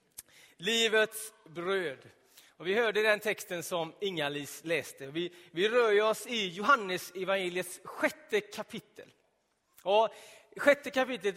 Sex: male